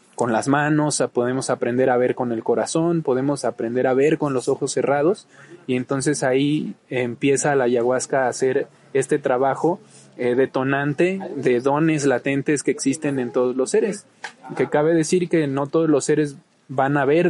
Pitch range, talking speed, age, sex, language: 130-155 Hz, 175 wpm, 20-39, male, Spanish